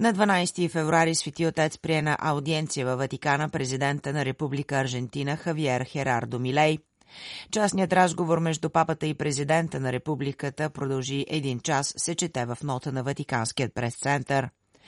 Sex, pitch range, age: female, 140-160 Hz, 30-49